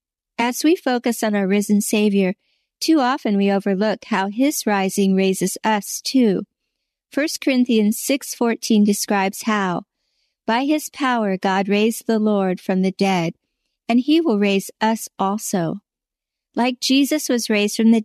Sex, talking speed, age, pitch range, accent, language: female, 145 wpm, 50-69, 195-245 Hz, American, English